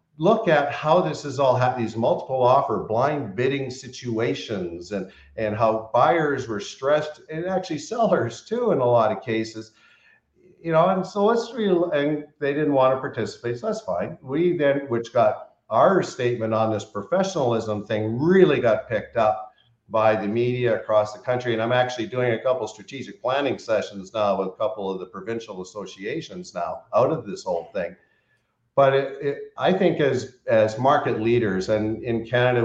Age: 50-69